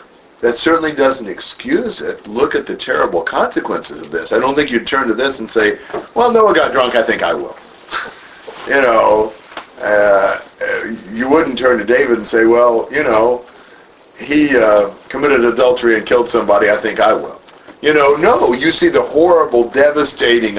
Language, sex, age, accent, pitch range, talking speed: English, male, 50-69, American, 110-160 Hz, 180 wpm